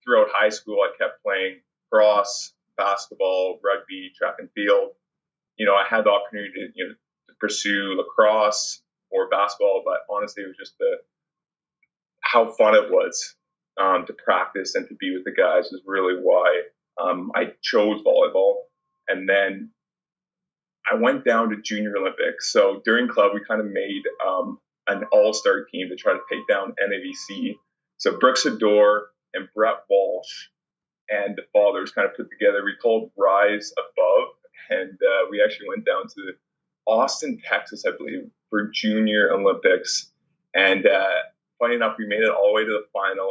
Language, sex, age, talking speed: English, male, 30-49, 165 wpm